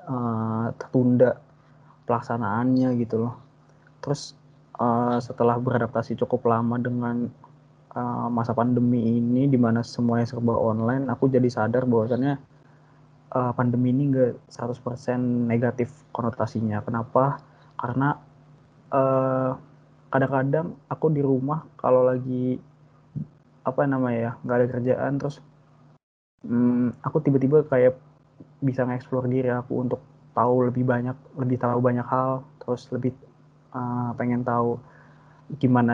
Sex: male